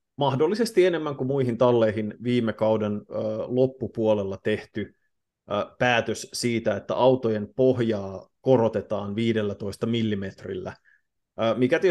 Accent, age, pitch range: native, 30-49, 105-120 Hz